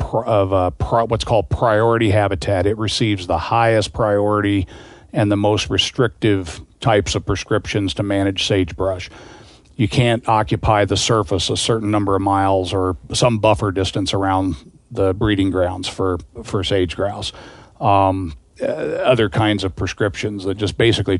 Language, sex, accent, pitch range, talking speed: English, male, American, 95-110 Hz, 150 wpm